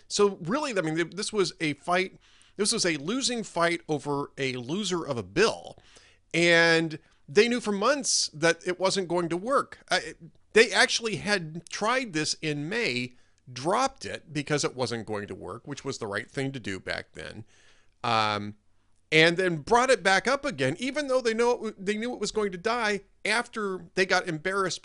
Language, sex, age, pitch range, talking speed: English, male, 40-59, 135-205 Hz, 185 wpm